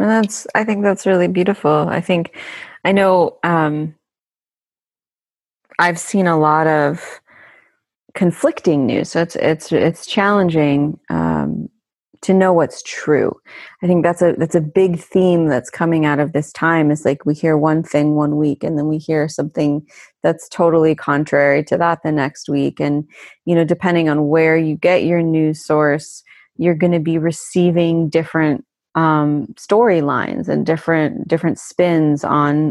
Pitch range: 155-180 Hz